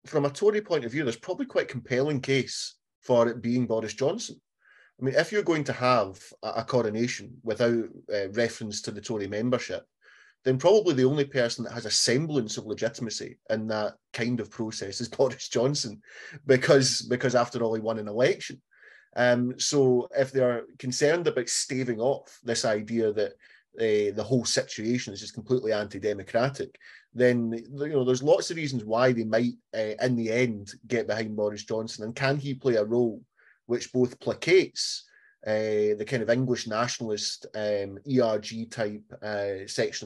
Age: 30-49